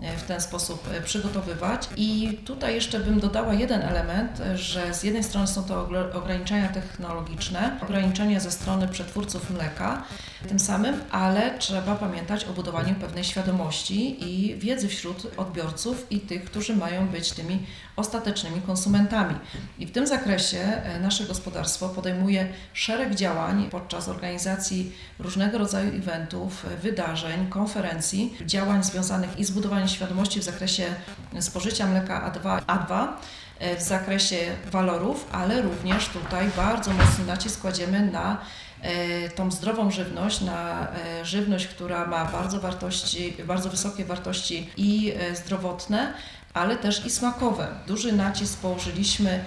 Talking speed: 125 wpm